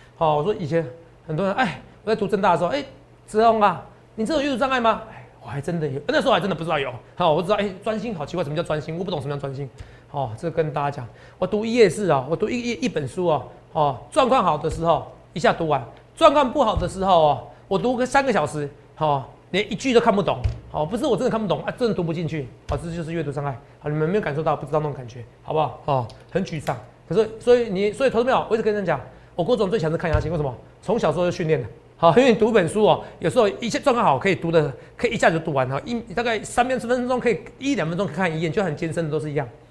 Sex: male